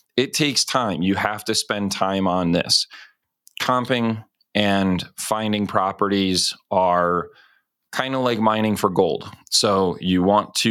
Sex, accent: male, American